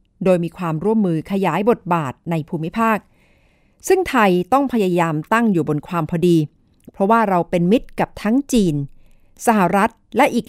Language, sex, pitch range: Thai, female, 170-230 Hz